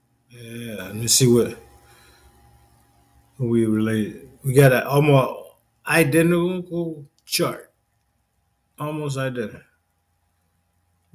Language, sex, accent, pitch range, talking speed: English, male, American, 110-135 Hz, 85 wpm